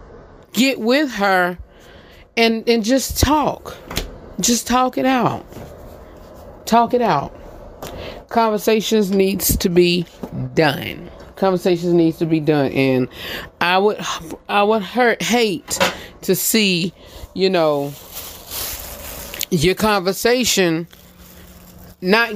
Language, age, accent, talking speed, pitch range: English, 30-49, American, 100 wpm, 150-210 Hz